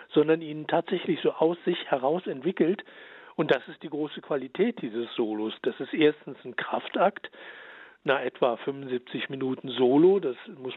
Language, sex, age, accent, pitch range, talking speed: German, male, 60-79, German, 145-235 Hz, 155 wpm